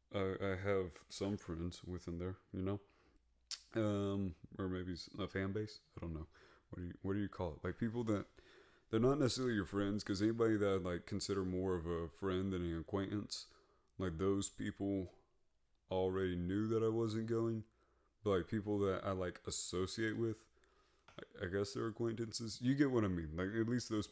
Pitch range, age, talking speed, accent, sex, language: 90-110 Hz, 30-49, 195 wpm, American, male, English